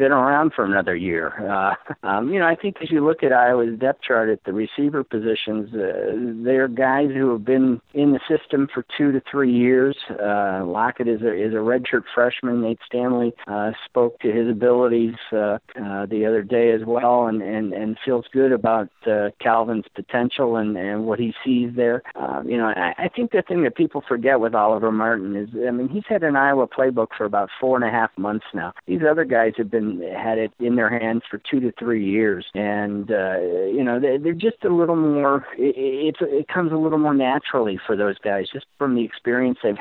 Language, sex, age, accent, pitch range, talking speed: English, male, 50-69, American, 115-140 Hz, 210 wpm